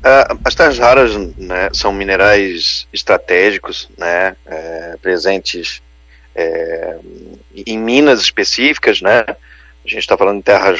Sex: male